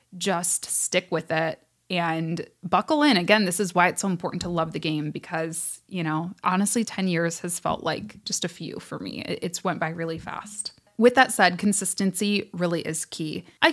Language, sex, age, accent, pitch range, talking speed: English, female, 20-39, American, 175-220 Hz, 195 wpm